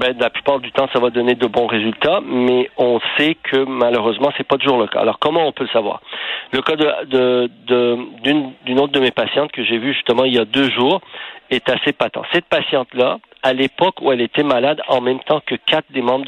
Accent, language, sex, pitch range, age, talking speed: French, French, male, 120-145 Hz, 50-69, 240 wpm